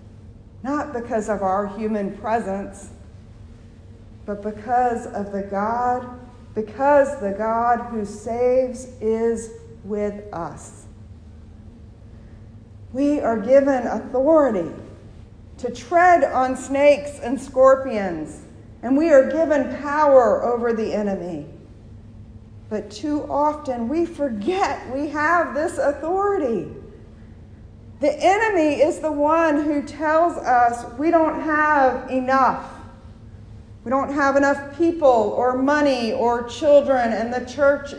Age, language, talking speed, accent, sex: 50-69, English, 110 wpm, American, female